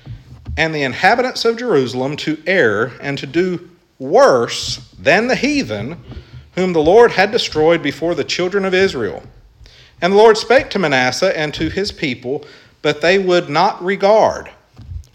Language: English